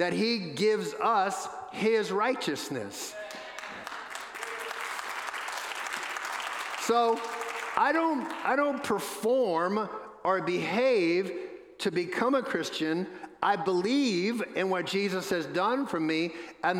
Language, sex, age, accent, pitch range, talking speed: English, male, 50-69, American, 185-245 Hz, 100 wpm